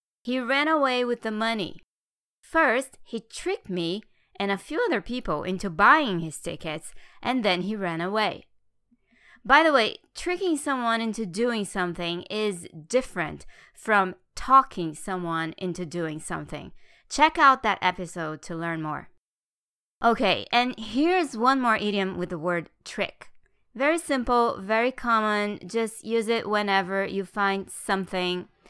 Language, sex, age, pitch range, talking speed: English, female, 20-39, 180-230 Hz, 140 wpm